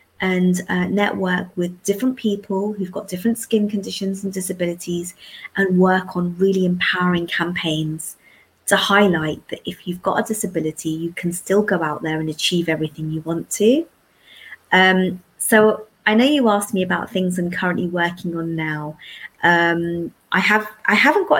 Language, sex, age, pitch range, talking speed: Punjabi, female, 20-39, 175-205 Hz, 170 wpm